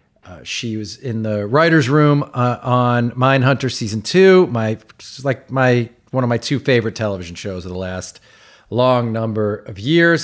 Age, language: 40-59, English